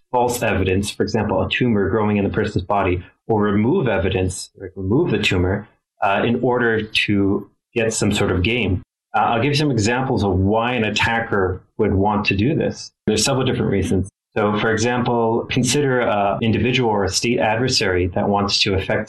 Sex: male